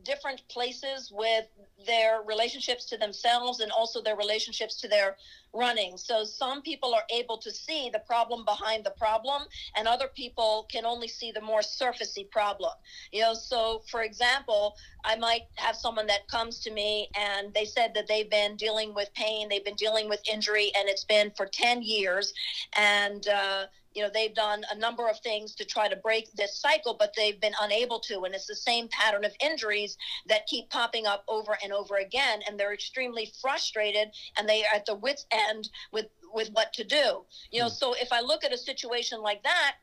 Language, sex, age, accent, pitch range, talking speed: English, female, 50-69, American, 210-245 Hz, 200 wpm